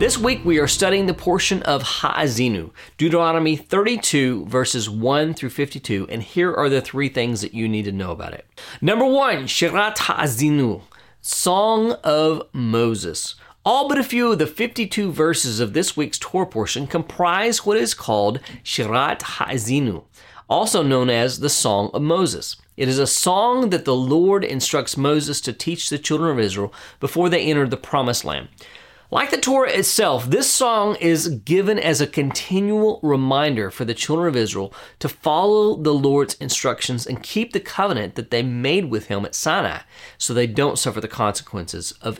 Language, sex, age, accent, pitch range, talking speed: English, male, 40-59, American, 115-175 Hz, 175 wpm